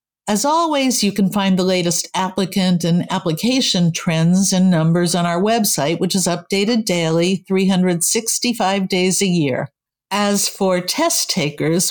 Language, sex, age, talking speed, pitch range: English, female, 60-79, 140 wpm, 175-210 Hz